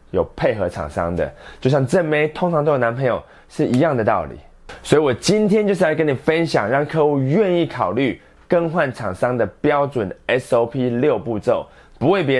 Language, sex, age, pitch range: Chinese, male, 20-39, 115-160 Hz